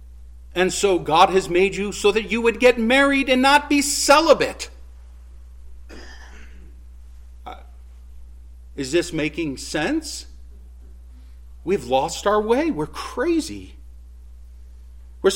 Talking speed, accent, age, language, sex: 110 wpm, American, 50-69, English, male